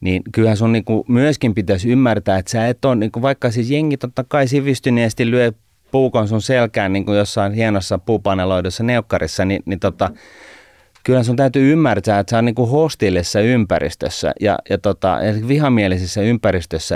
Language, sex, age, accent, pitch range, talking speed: Finnish, male, 30-49, native, 95-115 Hz, 160 wpm